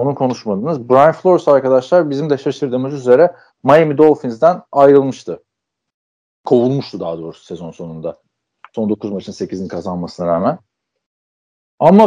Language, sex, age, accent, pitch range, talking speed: Turkish, male, 40-59, native, 110-155 Hz, 120 wpm